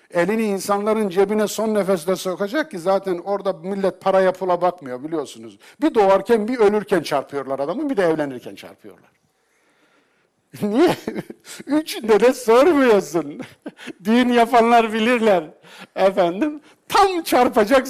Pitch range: 175-245 Hz